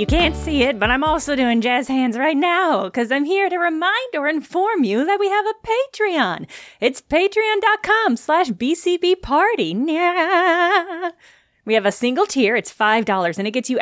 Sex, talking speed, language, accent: female, 175 wpm, English, American